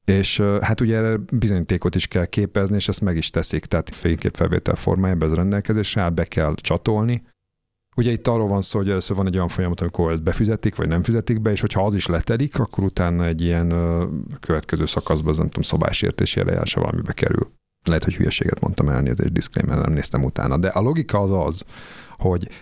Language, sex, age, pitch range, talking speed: Hungarian, male, 50-69, 80-105 Hz, 195 wpm